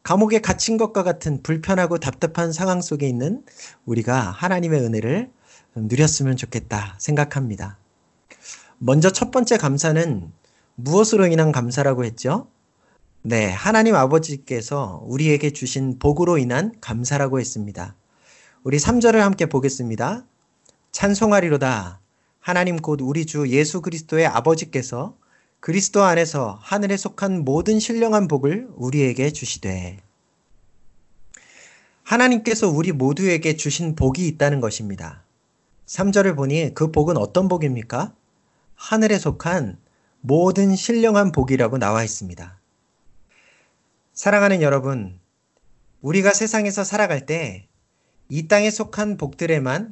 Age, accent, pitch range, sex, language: 40-59, native, 125-185 Hz, male, Korean